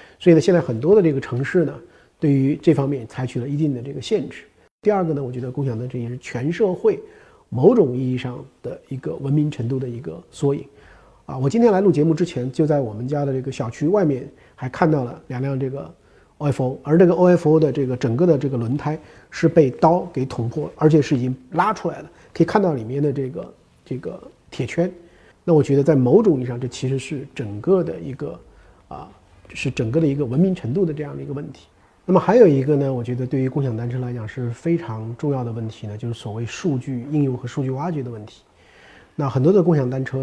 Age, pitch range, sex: 50-69, 125-155 Hz, male